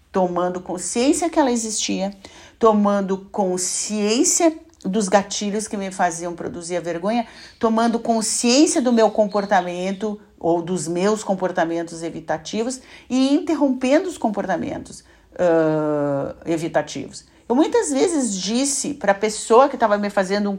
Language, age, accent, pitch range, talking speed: Portuguese, 50-69, Brazilian, 180-240 Hz, 120 wpm